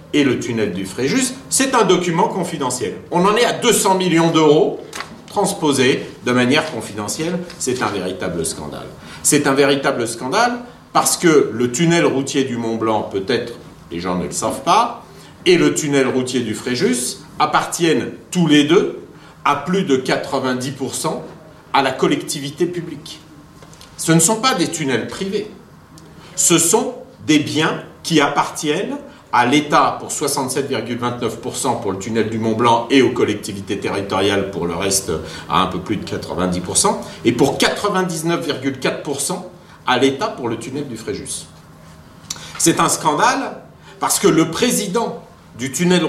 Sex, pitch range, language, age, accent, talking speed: male, 125-175 Hz, French, 50-69, French, 150 wpm